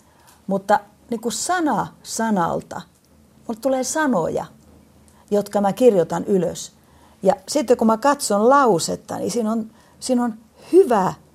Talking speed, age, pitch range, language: 120 wpm, 40-59, 180-260 Hz, Finnish